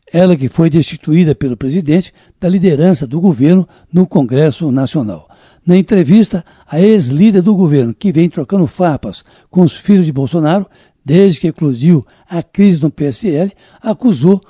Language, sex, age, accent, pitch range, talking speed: Portuguese, male, 60-79, Brazilian, 155-195 Hz, 150 wpm